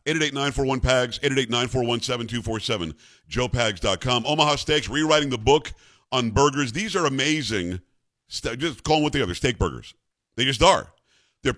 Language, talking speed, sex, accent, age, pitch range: English, 145 wpm, male, American, 50-69, 120-145 Hz